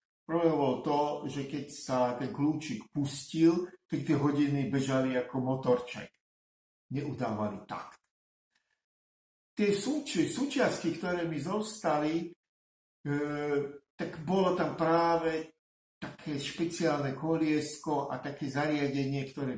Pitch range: 110-150 Hz